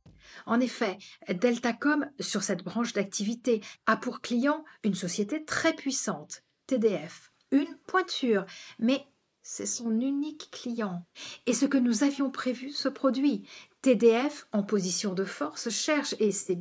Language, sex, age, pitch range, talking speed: French, female, 50-69, 190-245 Hz, 135 wpm